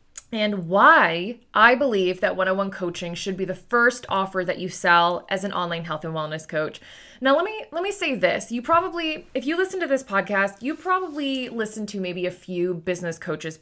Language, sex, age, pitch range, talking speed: English, female, 20-39, 185-240 Hz, 205 wpm